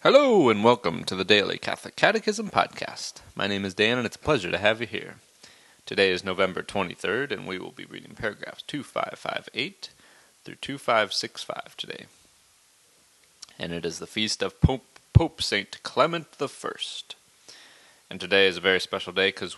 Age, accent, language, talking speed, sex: 30-49, American, English, 165 wpm, male